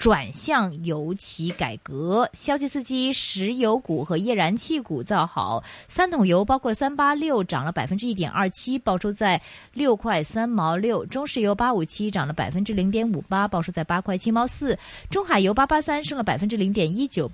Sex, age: female, 20-39